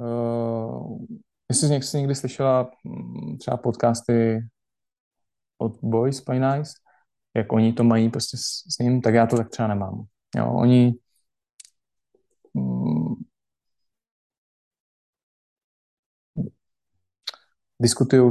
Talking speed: 90 wpm